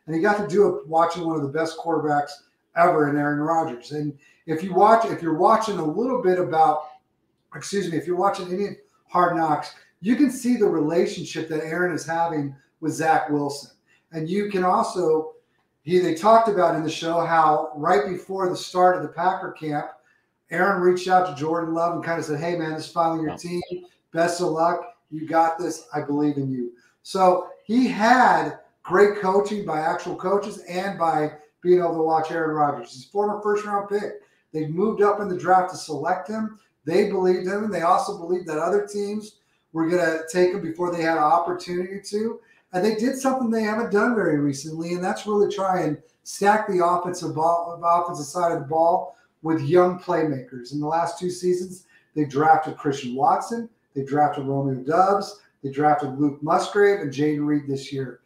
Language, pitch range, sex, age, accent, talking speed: English, 155-190 Hz, male, 40-59, American, 200 wpm